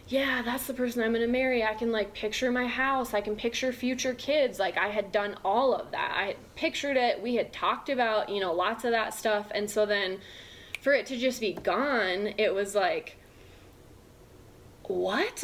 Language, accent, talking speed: English, American, 200 wpm